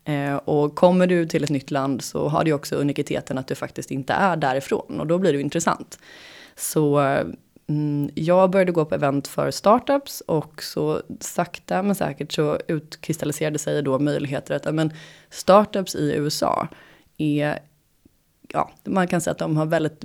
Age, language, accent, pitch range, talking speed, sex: 20-39, Swedish, native, 150-180 Hz, 165 wpm, female